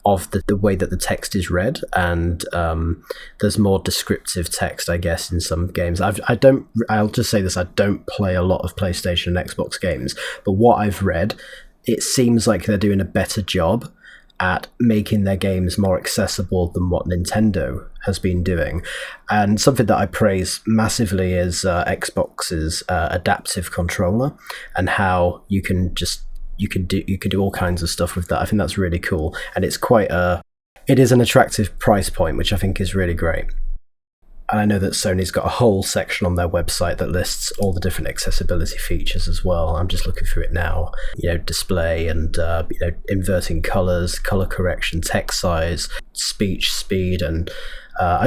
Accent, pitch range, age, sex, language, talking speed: British, 90-105 Hz, 30-49, male, English, 190 wpm